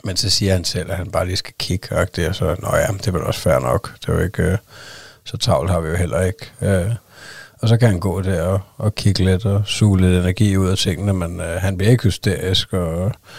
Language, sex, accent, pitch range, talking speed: Danish, male, native, 90-105 Hz, 240 wpm